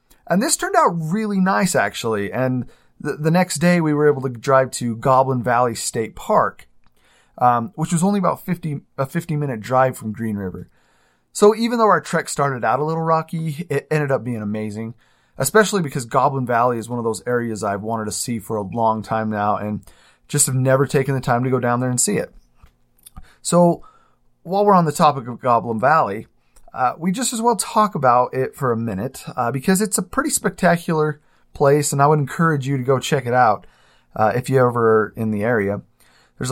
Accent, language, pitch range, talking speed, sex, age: American, English, 115-160 Hz, 210 wpm, male, 30-49